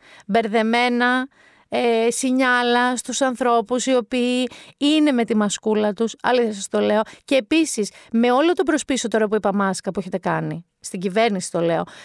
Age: 30-49